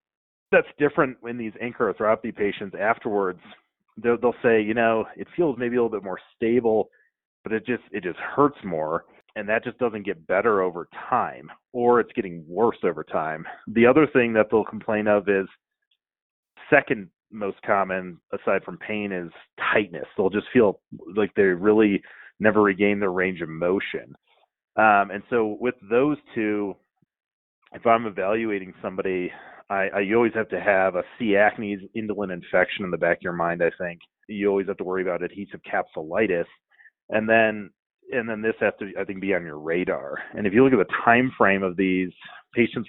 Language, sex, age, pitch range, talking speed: English, male, 30-49, 95-115 Hz, 185 wpm